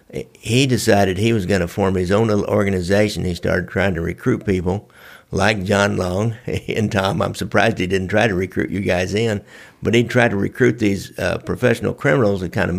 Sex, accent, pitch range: male, American, 95-115 Hz